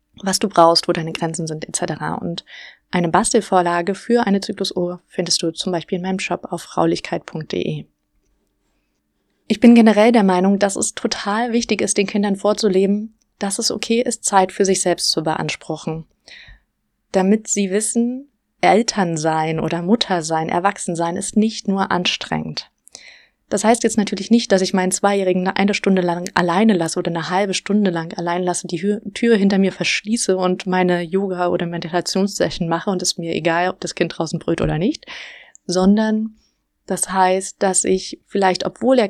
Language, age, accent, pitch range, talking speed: German, 20-39, German, 175-210 Hz, 170 wpm